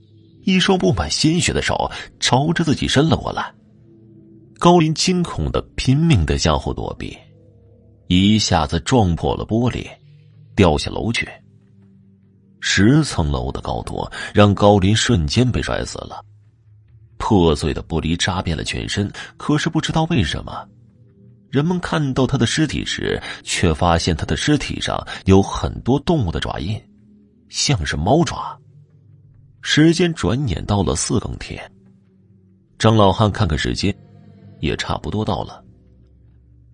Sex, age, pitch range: male, 30-49, 85-130 Hz